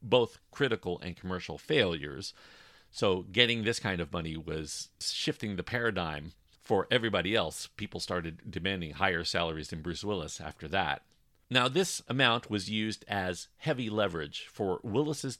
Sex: male